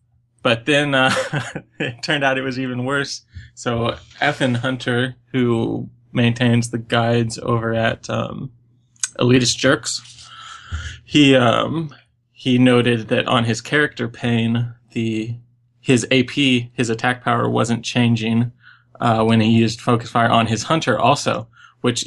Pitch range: 115-125 Hz